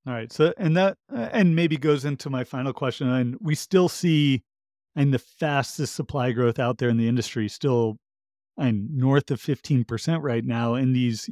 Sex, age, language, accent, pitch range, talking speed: male, 30-49, English, American, 125-155 Hz, 185 wpm